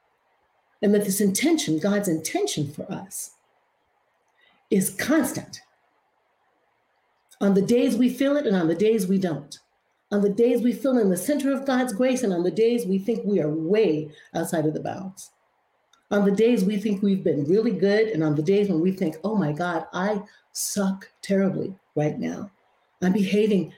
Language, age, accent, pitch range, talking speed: English, 50-69, American, 185-245 Hz, 180 wpm